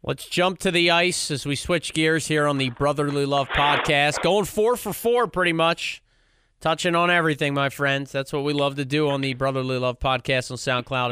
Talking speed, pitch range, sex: 210 wpm, 130-165 Hz, male